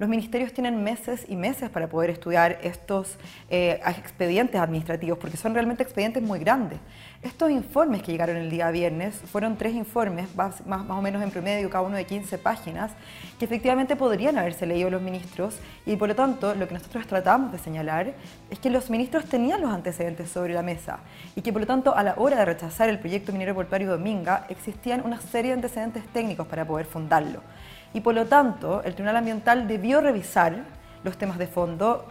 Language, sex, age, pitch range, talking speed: Spanish, female, 20-39, 180-235 Hz, 195 wpm